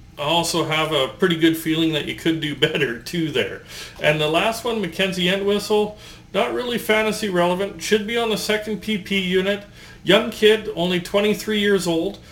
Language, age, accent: English, 40-59, American